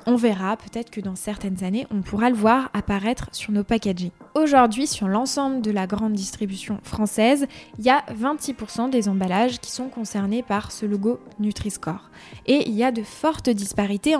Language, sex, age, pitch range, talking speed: French, female, 20-39, 205-245 Hz, 180 wpm